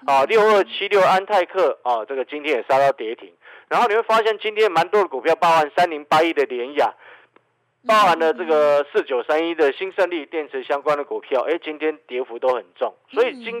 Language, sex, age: Chinese, male, 50-69